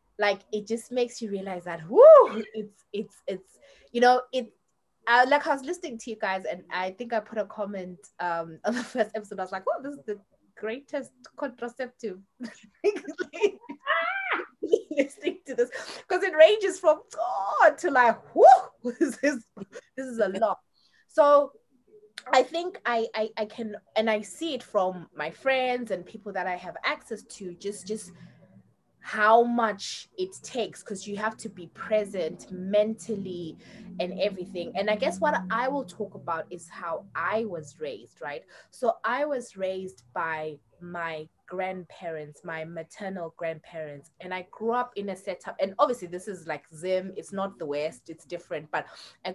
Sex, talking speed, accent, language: female, 170 wpm, South African, English